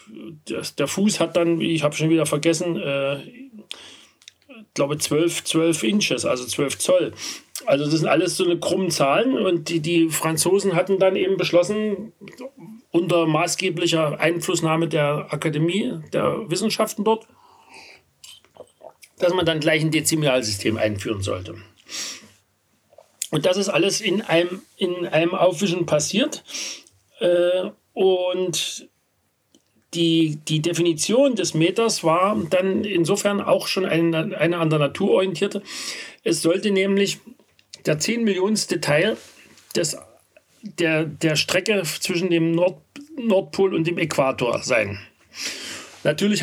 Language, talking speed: German, 125 wpm